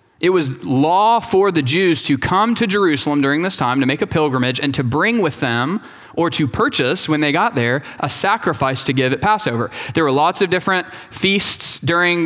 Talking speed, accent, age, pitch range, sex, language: 205 wpm, American, 20-39, 140-185 Hz, male, English